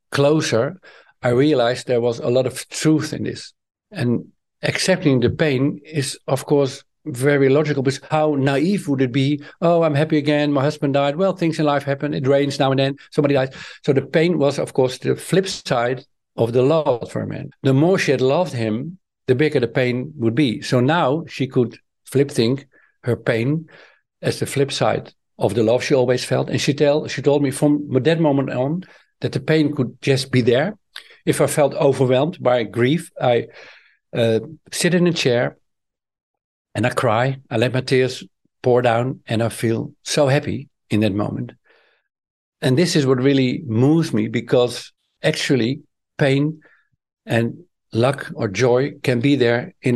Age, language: 50-69, English